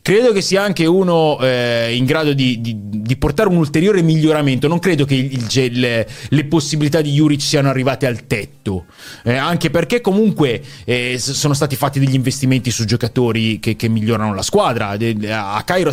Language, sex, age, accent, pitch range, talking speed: Italian, male, 30-49, native, 115-160 Hz, 170 wpm